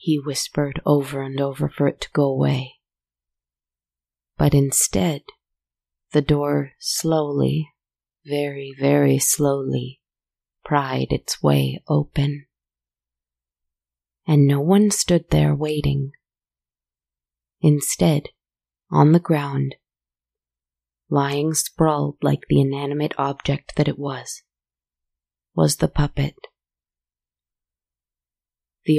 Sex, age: female, 30-49